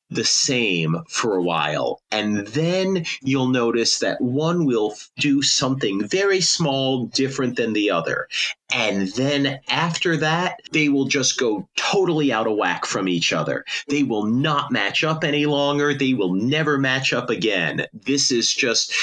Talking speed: 160 wpm